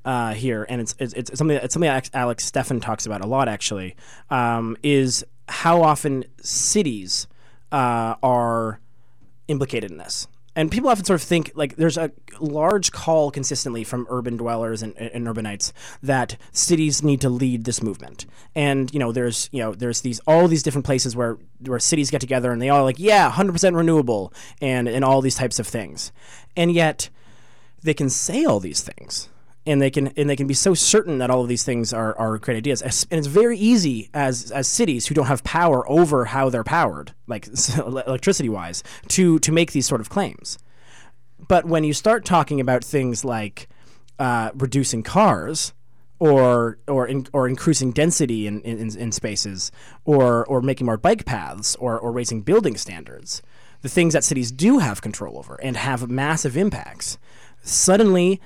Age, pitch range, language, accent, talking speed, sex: 20-39, 120-150 Hz, English, American, 185 wpm, male